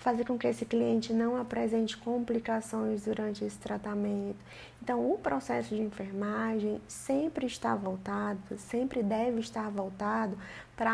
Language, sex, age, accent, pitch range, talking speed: Portuguese, female, 20-39, Brazilian, 205-240 Hz, 130 wpm